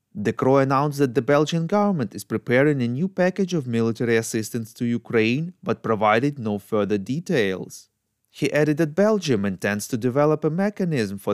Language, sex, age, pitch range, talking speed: English, male, 30-49, 115-165 Hz, 170 wpm